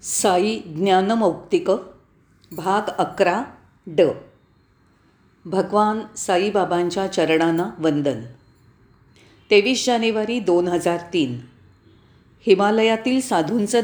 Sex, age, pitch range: female, 40-59, 175-250 Hz